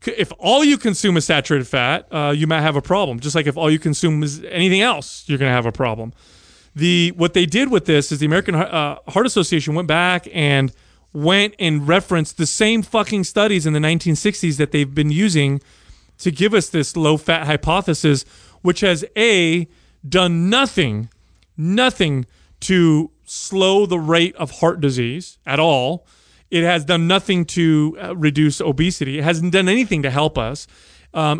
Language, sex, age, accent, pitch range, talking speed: English, male, 30-49, American, 145-180 Hz, 180 wpm